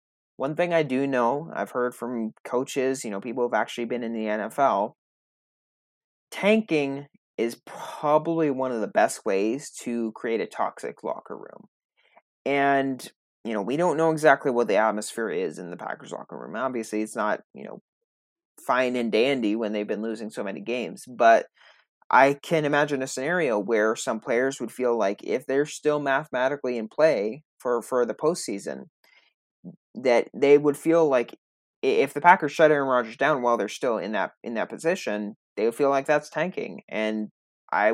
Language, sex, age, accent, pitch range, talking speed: English, male, 30-49, American, 120-150 Hz, 180 wpm